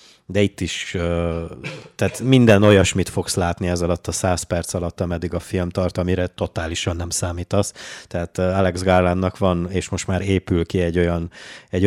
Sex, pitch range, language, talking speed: male, 85-100 Hz, Hungarian, 170 wpm